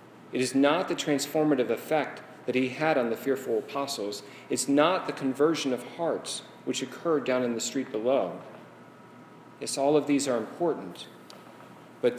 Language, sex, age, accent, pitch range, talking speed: English, male, 40-59, American, 120-150 Hz, 160 wpm